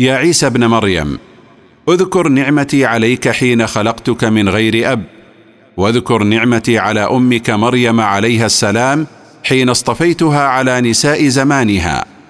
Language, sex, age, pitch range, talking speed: Arabic, male, 50-69, 115-140 Hz, 115 wpm